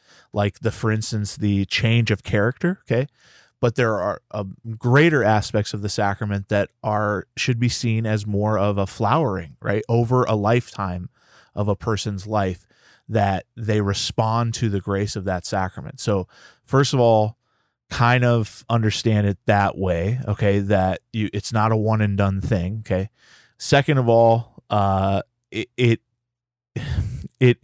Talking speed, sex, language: 160 wpm, male, English